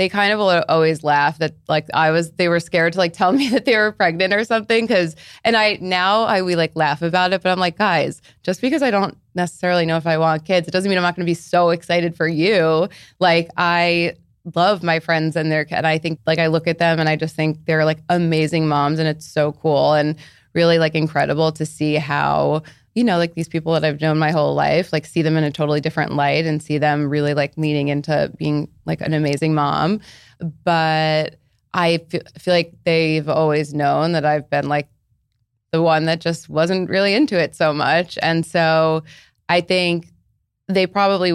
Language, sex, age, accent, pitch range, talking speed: English, female, 20-39, American, 155-175 Hz, 220 wpm